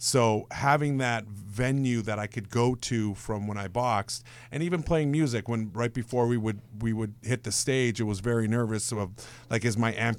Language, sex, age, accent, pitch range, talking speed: English, male, 50-69, American, 105-120 Hz, 210 wpm